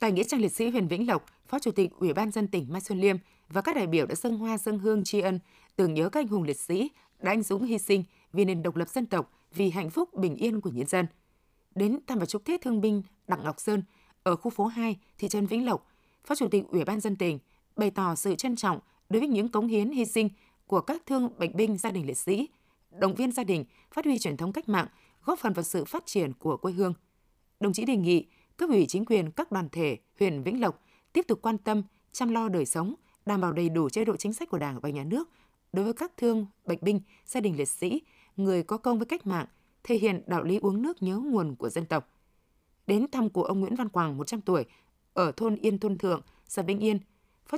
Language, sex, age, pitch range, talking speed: Vietnamese, female, 20-39, 180-225 Hz, 250 wpm